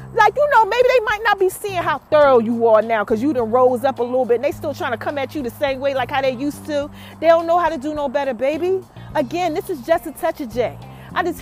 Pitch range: 255-345 Hz